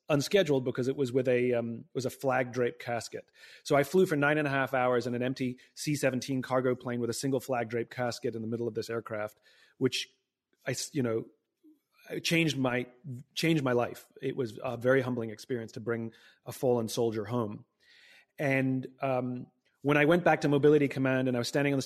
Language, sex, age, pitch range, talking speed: English, male, 30-49, 120-145 Hz, 210 wpm